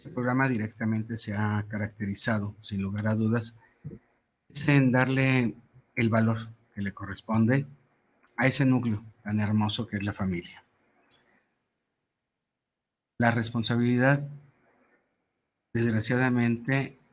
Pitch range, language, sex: 105-125 Hz, Spanish, male